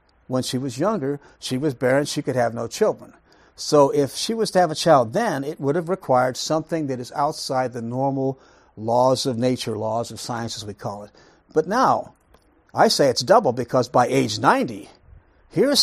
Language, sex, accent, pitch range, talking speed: English, male, American, 120-165 Hz, 195 wpm